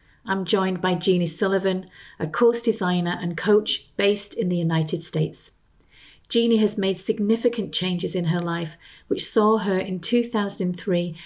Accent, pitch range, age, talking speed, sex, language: British, 180-220 Hz, 40-59, 150 wpm, female, English